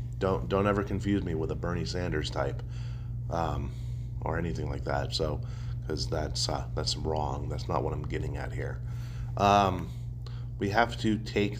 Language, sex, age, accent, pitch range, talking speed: English, male, 30-49, American, 100-120 Hz, 170 wpm